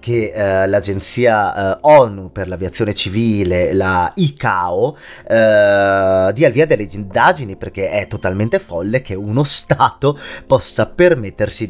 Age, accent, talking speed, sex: 30-49, native, 130 wpm, male